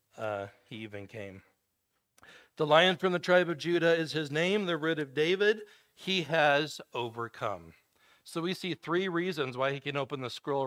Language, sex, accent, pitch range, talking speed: English, male, American, 130-165 Hz, 180 wpm